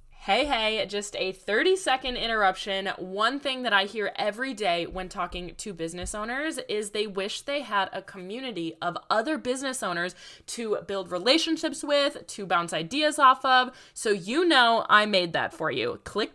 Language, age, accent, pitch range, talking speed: English, 20-39, American, 190-255 Hz, 175 wpm